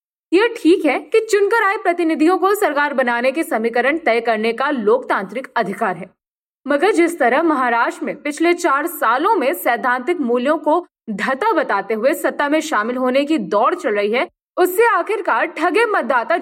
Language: Hindi